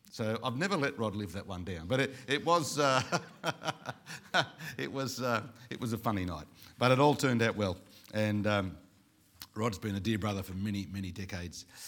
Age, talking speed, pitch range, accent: 50-69, 195 wpm, 105-130 Hz, Australian